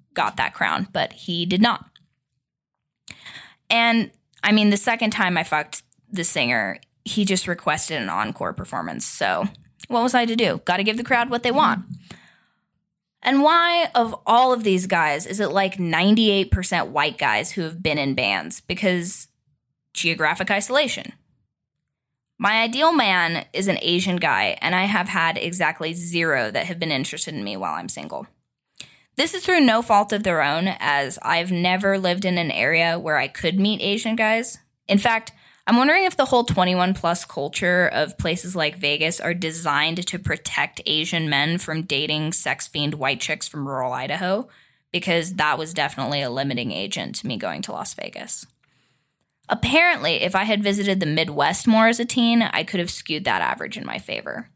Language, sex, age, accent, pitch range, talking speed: English, female, 10-29, American, 155-215 Hz, 180 wpm